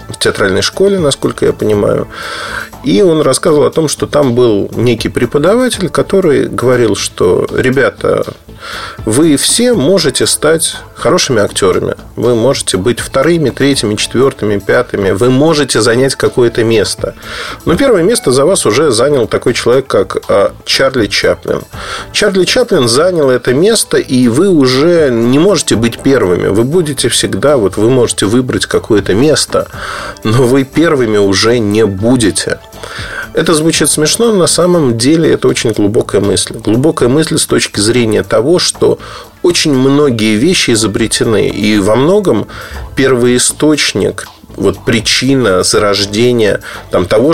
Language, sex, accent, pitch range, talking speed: Russian, male, native, 115-185 Hz, 135 wpm